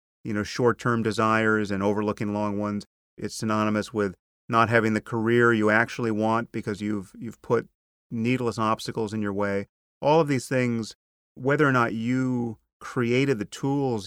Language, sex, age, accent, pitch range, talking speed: English, male, 30-49, American, 100-115 Hz, 160 wpm